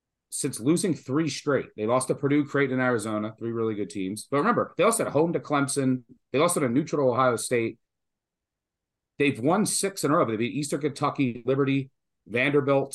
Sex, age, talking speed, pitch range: male, 40-59, 190 wpm, 110-140 Hz